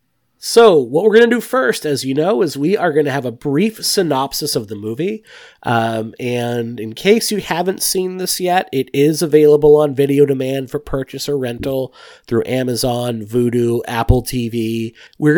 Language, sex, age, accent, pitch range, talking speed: English, male, 30-49, American, 115-155 Hz, 185 wpm